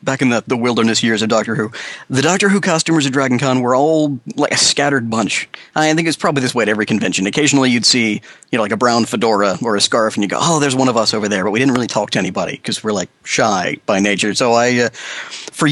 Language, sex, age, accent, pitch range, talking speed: English, male, 40-59, American, 110-150 Hz, 265 wpm